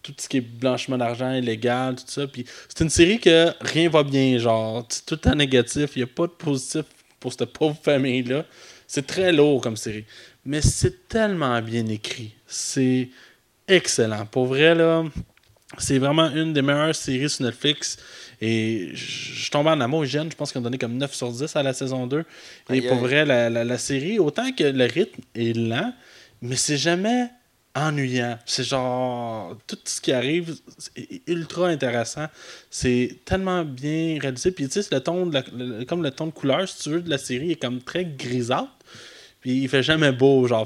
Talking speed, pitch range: 185 wpm, 125-155 Hz